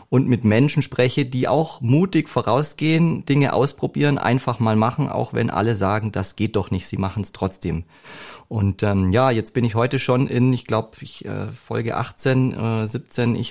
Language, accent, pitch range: German, German, 110-135 Hz